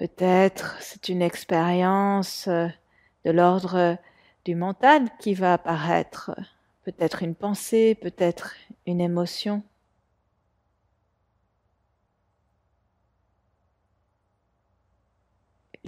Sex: female